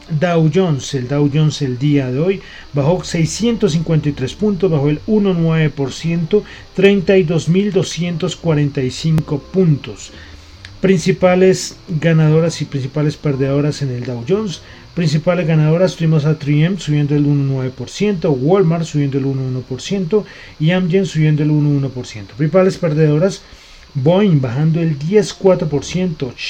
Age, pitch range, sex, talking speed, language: 30-49, 135-170 Hz, male, 110 wpm, Spanish